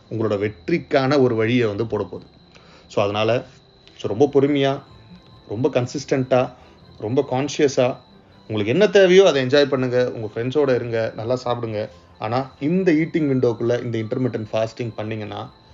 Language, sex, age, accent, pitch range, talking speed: Tamil, male, 30-49, native, 115-140 Hz, 135 wpm